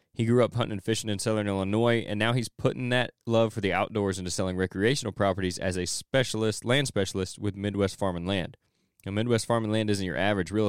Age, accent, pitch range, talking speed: 20-39, American, 95-115 Hz, 230 wpm